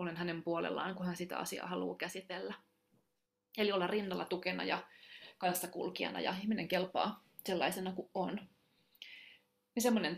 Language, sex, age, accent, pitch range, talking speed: Finnish, female, 30-49, native, 160-195 Hz, 125 wpm